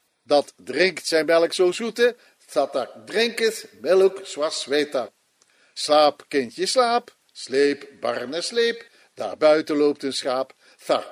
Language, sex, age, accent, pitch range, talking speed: Dutch, male, 50-69, Dutch, 135-170 Hz, 125 wpm